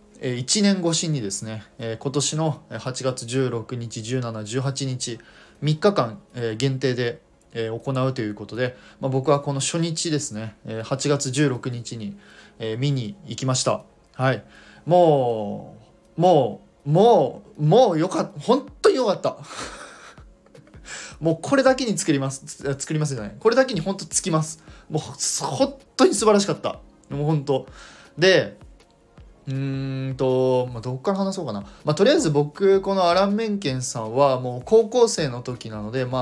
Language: Japanese